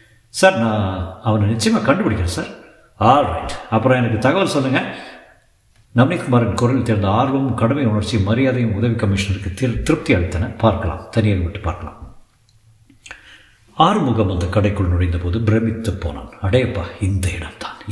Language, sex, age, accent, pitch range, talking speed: Tamil, male, 50-69, native, 100-125 Hz, 125 wpm